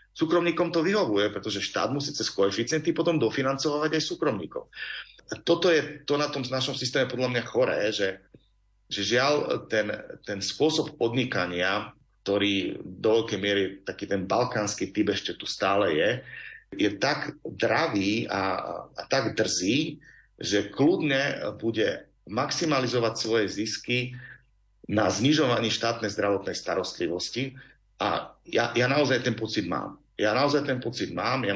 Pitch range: 100-135 Hz